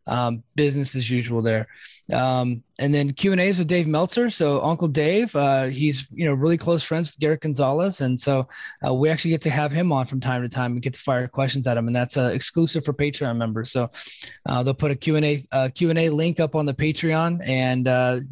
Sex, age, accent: male, 20-39, American